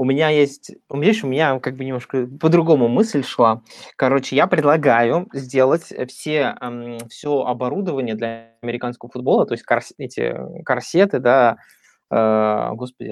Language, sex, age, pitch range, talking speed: Russian, male, 20-39, 120-140 Hz, 125 wpm